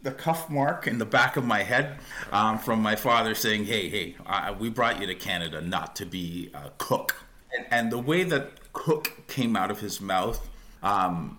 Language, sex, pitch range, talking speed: English, male, 105-135 Hz, 200 wpm